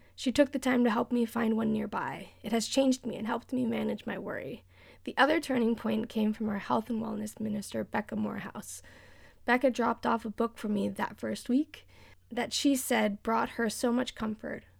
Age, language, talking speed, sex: 10-29, English, 205 wpm, female